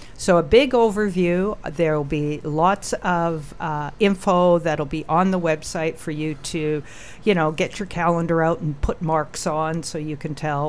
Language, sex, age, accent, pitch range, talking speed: English, female, 50-69, American, 150-195 Hz, 180 wpm